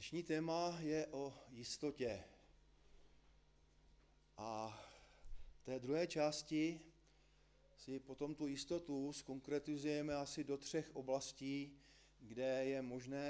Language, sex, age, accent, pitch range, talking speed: Czech, male, 40-59, native, 135-180 Hz, 100 wpm